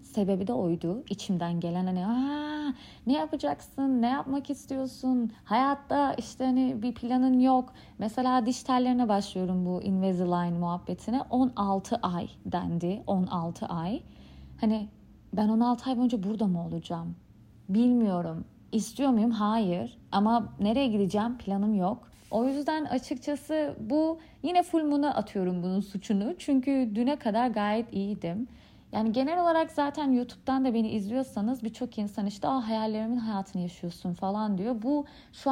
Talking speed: 135 wpm